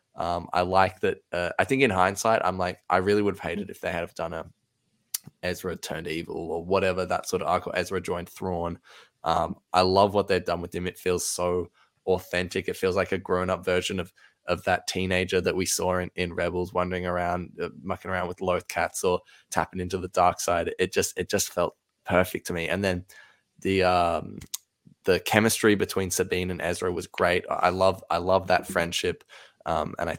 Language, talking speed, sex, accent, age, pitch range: English, 215 wpm, male, Australian, 20-39, 90-100 Hz